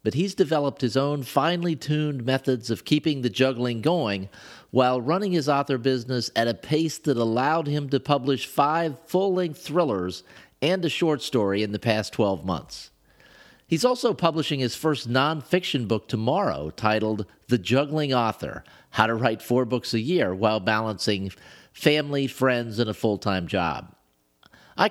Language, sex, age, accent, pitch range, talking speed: English, male, 50-69, American, 110-150 Hz, 160 wpm